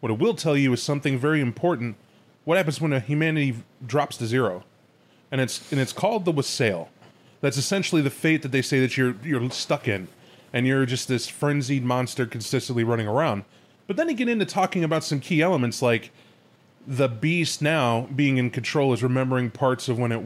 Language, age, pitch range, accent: English, 30-49, 120-145 Hz, American